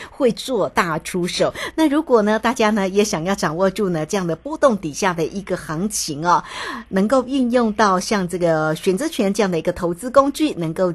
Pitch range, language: 175-220 Hz, Chinese